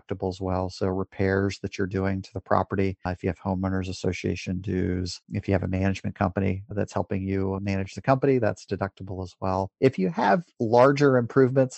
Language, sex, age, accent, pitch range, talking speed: English, male, 30-49, American, 100-115 Hz, 190 wpm